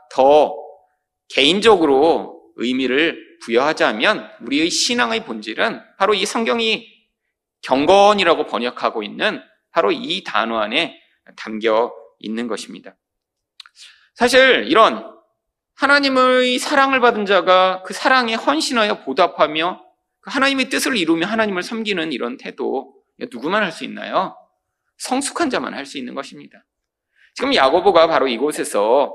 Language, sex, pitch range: Korean, male, 170-270 Hz